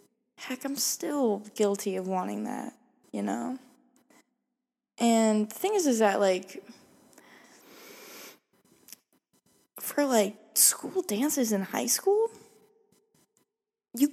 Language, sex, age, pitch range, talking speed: English, female, 10-29, 205-265 Hz, 100 wpm